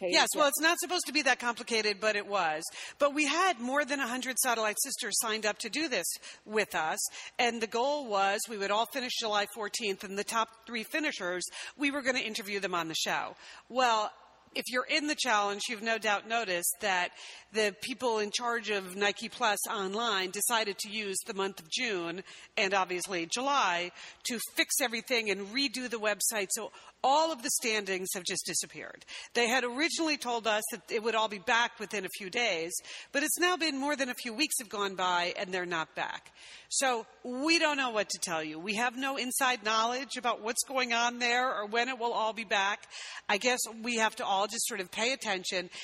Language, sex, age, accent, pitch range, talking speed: English, female, 40-59, American, 205-260 Hz, 215 wpm